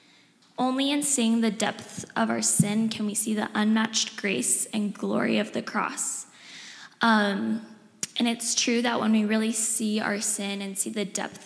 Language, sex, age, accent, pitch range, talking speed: English, female, 10-29, American, 205-240 Hz, 180 wpm